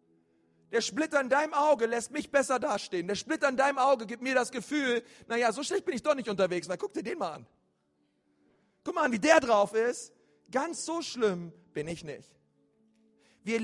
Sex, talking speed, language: male, 200 wpm, German